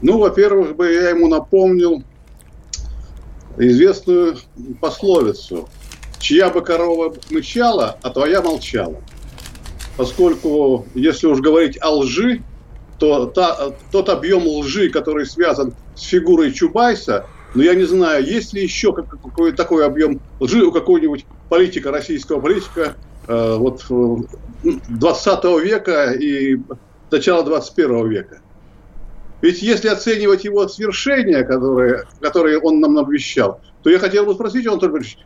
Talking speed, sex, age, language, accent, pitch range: 120 wpm, male, 50-69, Russian, native, 155-260 Hz